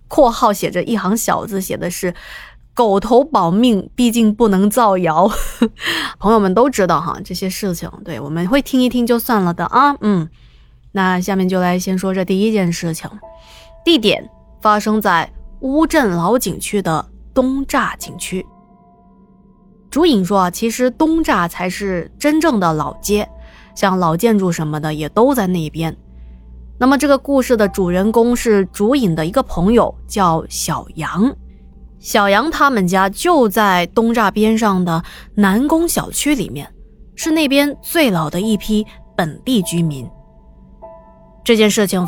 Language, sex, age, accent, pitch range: Chinese, female, 20-39, native, 175-235 Hz